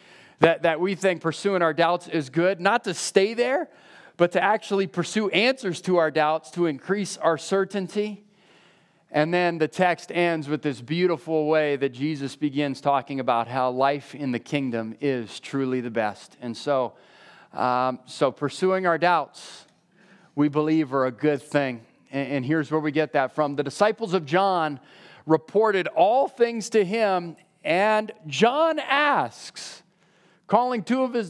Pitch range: 155-205 Hz